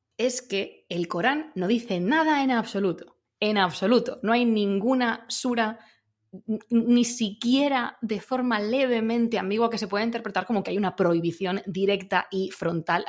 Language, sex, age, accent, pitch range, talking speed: Spanish, female, 20-39, Spanish, 180-235 Hz, 150 wpm